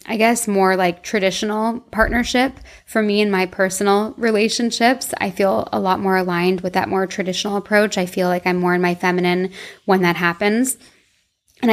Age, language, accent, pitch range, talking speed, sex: 20-39, English, American, 185-210 Hz, 180 wpm, female